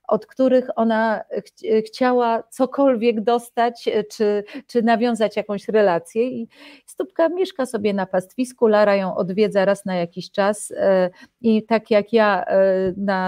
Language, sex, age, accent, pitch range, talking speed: Polish, female, 40-59, native, 195-225 Hz, 130 wpm